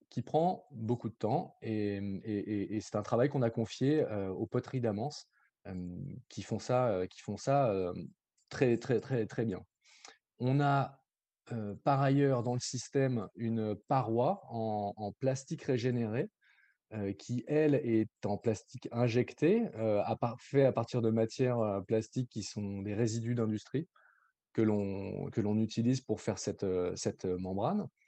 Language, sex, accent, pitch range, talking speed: French, male, French, 105-130 Hz, 160 wpm